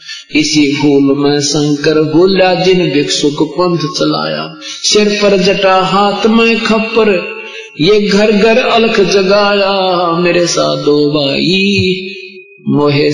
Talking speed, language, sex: 110 wpm, Hindi, male